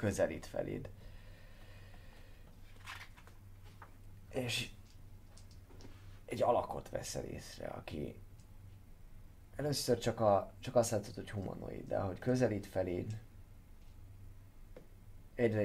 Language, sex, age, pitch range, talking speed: Hungarian, male, 30-49, 95-105 Hz, 80 wpm